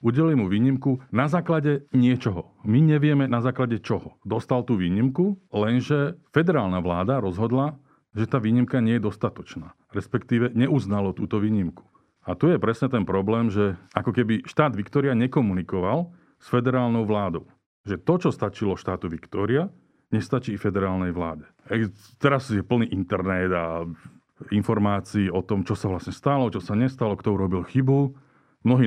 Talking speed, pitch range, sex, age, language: 150 wpm, 100-135 Hz, male, 40-59, Slovak